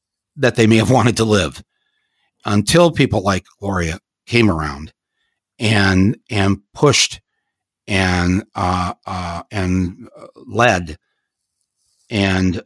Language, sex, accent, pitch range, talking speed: English, male, American, 90-110 Hz, 105 wpm